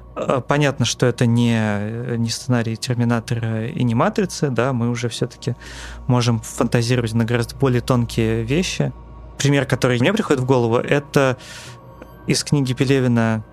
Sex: male